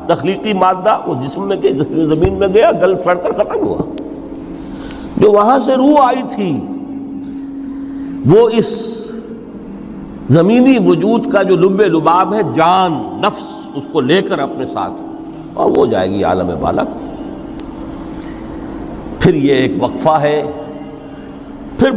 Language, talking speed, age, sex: Urdu, 135 wpm, 60-79, male